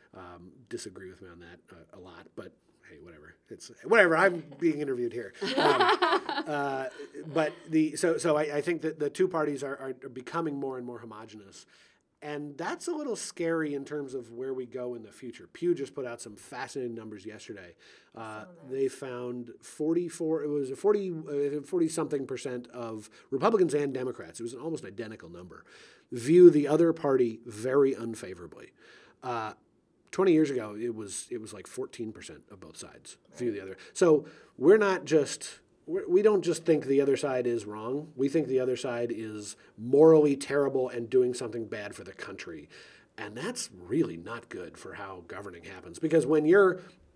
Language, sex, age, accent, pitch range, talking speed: English, male, 30-49, American, 125-160 Hz, 185 wpm